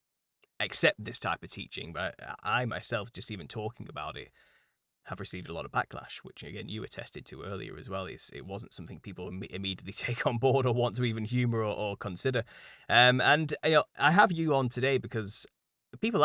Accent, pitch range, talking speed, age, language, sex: British, 100-125 Hz, 195 wpm, 20-39, English, male